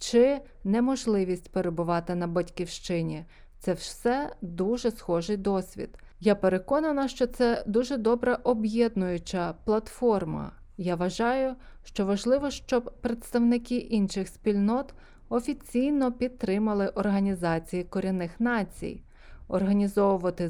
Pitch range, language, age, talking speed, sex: 175-230 Hz, Ukrainian, 20-39, 95 wpm, female